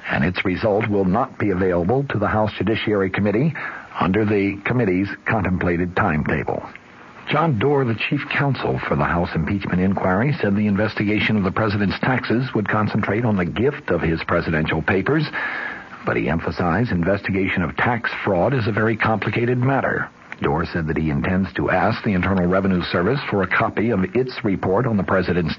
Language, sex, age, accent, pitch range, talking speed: English, male, 60-79, American, 90-110 Hz, 175 wpm